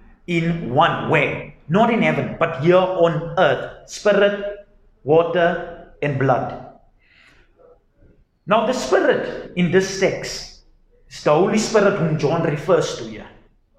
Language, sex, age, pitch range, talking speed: English, male, 50-69, 145-215 Hz, 125 wpm